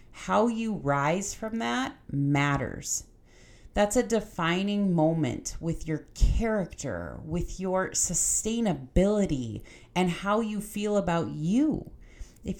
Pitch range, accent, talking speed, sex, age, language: 140-170 Hz, American, 110 wpm, female, 30-49, English